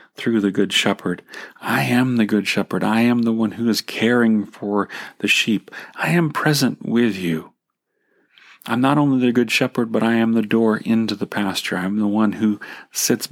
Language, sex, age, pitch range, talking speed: English, male, 40-59, 100-115 Hz, 205 wpm